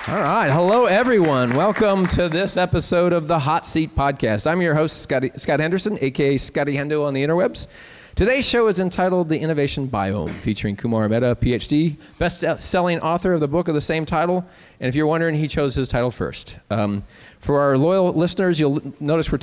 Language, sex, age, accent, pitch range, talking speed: English, male, 30-49, American, 115-160 Hz, 190 wpm